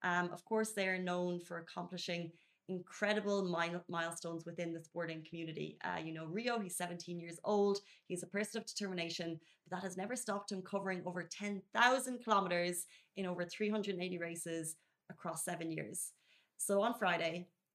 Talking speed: 160 wpm